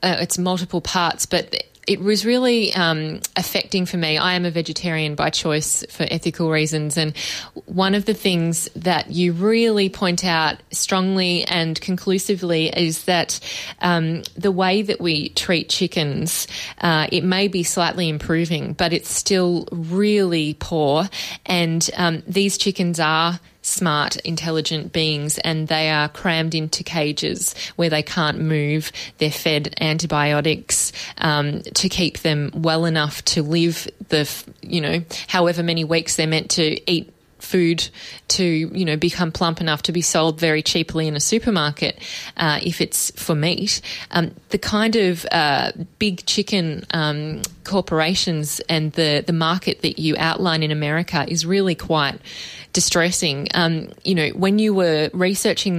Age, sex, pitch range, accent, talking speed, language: 20-39, female, 160-185 Hz, Australian, 155 wpm, English